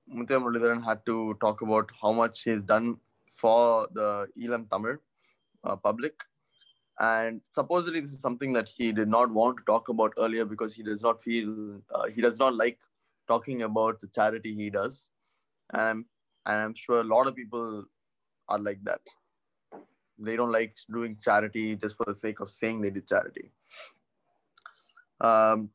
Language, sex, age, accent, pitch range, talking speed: Tamil, male, 20-39, native, 110-125 Hz, 170 wpm